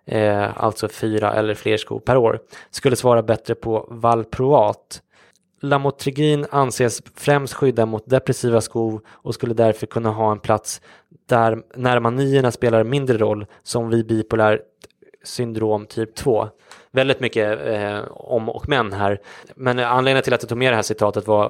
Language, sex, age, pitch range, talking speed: English, male, 20-39, 105-120 Hz, 155 wpm